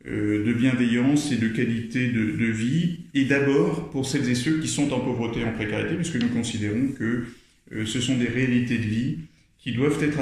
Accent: French